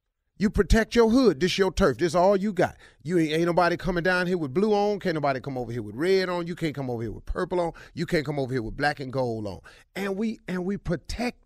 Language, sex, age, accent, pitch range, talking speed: English, male, 40-59, American, 125-175 Hz, 280 wpm